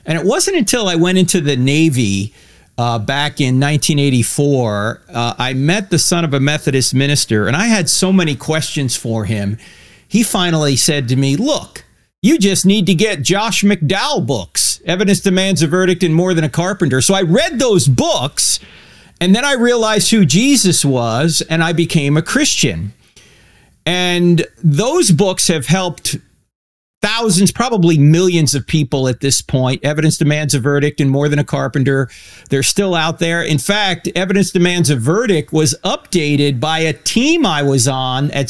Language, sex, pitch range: English, male, 140-185 Hz